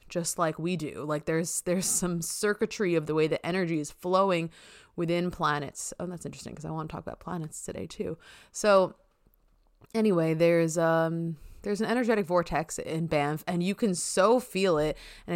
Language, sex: English, female